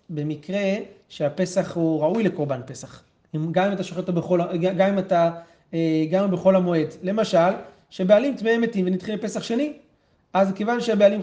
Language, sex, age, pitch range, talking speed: Hebrew, male, 30-49, 160-205 Hz, 150 wpm